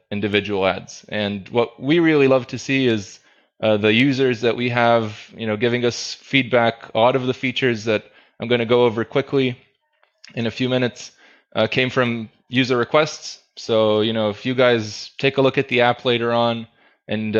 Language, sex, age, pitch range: English, male, 20-39, 110-125 Hz